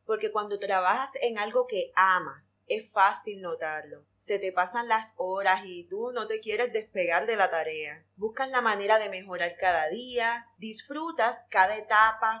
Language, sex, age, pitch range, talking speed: Spanish, female, 10-29, 180-245 Hz, 165 wpm